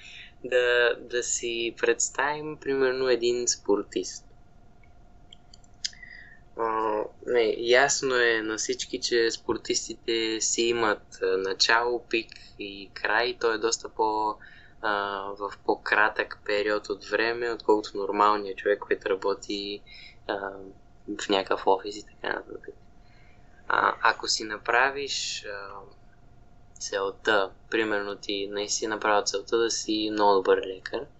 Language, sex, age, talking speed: Bulgarian, male, 20-39, 105 wpm